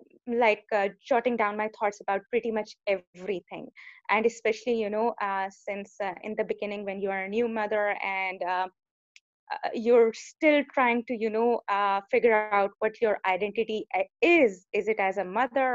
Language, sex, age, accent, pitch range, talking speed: English, female, 20-39, Indian, 195-230 Hz, 180 wpm